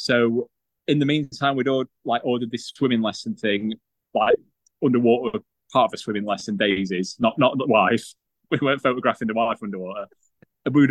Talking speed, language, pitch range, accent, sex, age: 170 wpm, English, 120-175 Hz, British, male, 20-39